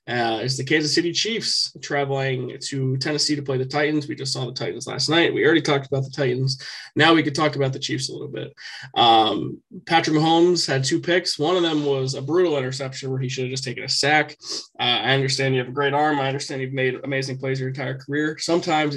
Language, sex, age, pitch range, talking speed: English, male, 20-39, 130-150 Hz, 235 wpm